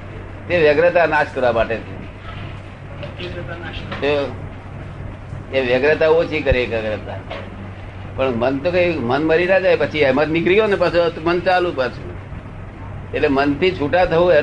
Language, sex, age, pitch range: Gujarati, male, 60-79, 100-145 Hz